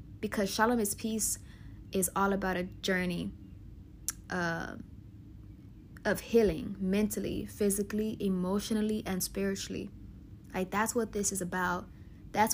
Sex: female